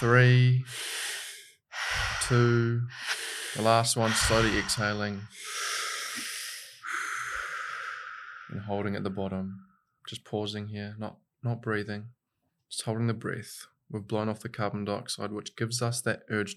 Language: English